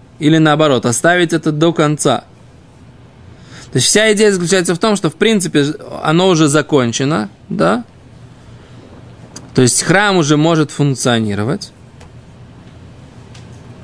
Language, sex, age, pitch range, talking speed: Russian, male, 20-39, 135-180 Hz, 115 wpm